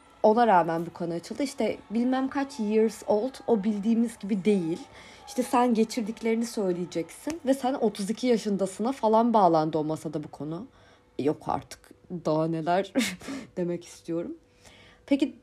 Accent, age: native, 30-49